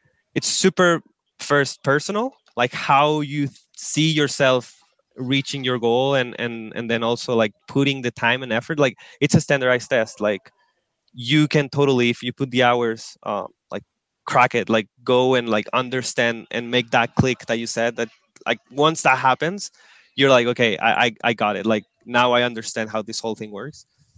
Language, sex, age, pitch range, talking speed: English, male, 20-39, 115-135 Hz, 190 wpm